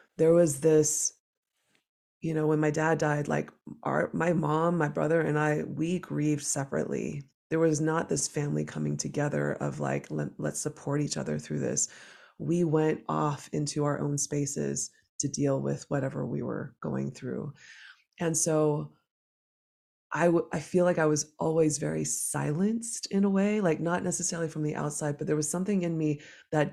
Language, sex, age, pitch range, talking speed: English, female, 20-39, 145-160 Hz, 175 wpm